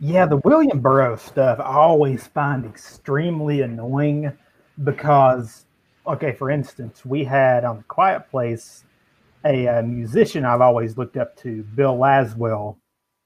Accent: American